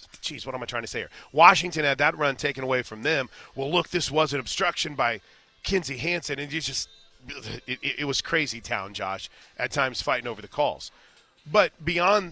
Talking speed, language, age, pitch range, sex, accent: 200 wpm, English, 30-49, 140-180 Hz, male, American